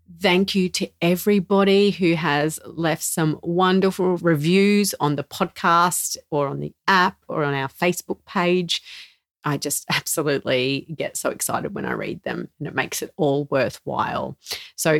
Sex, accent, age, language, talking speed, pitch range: female, Australian, 40-59, English, 155 wpm, 145-190 Hz